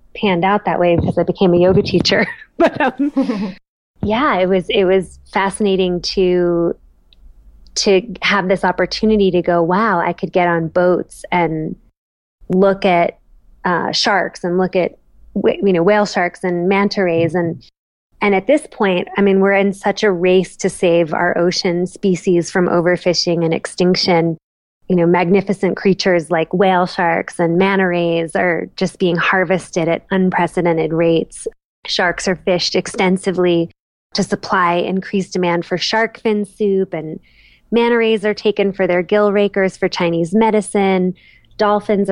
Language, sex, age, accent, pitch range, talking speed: English, female, 20-39, American, 175-200 Hz, 155 wpm